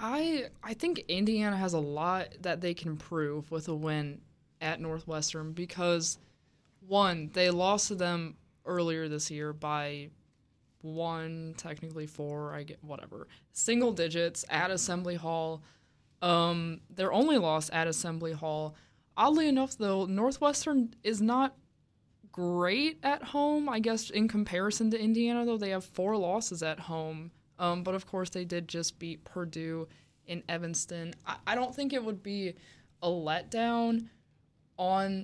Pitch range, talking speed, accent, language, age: 160-195 Hz, 150 wpm, American, English, 20-39